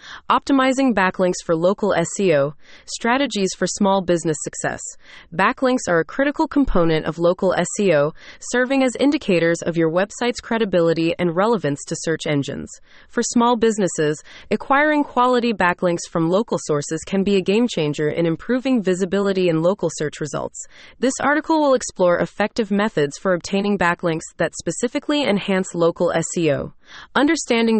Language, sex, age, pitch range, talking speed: English, female, 20-39, 170-235 Hz, 140 wpm